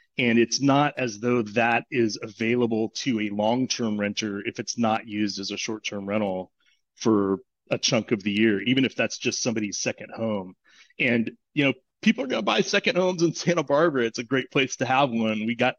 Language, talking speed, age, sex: English, 210 wpm, 30-49, male